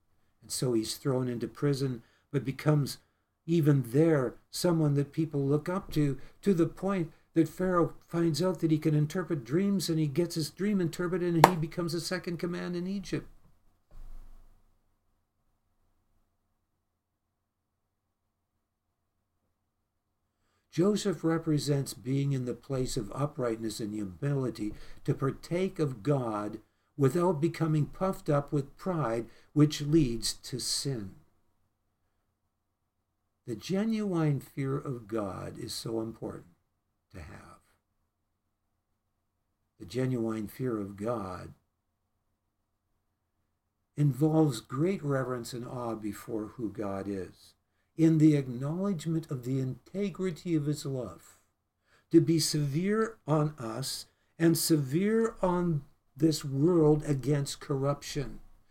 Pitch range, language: 105-155 Hz, English